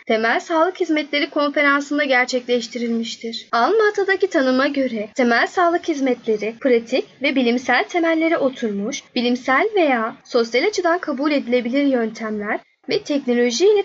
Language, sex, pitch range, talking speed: Turkish, female, 235-315 Hz, 110 wpm